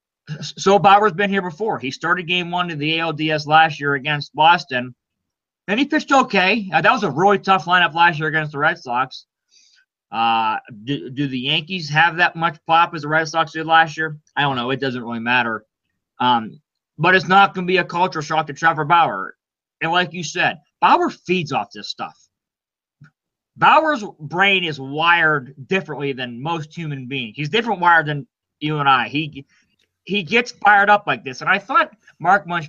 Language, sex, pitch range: English, male, 135-175 Hz